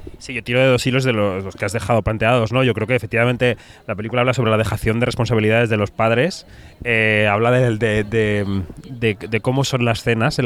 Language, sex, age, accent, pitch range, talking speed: Spanish, male, 20-39, Spanish, 110-135 Hz, 245 wpm